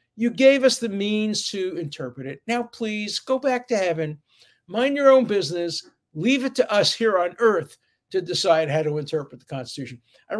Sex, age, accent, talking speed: male, 60-79, American, 190 wpm